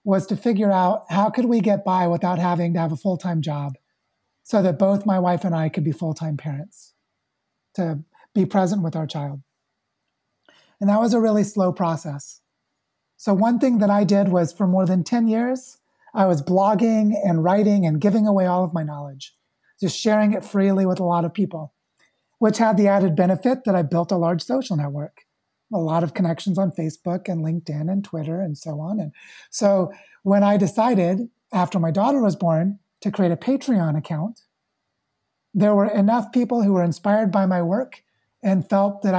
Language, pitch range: English, 170-210 Hz